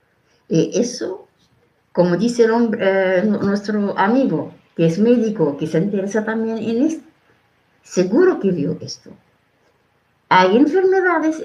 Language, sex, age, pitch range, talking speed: Spanish, female, 60-79, 190-295 Hz, 120 wpm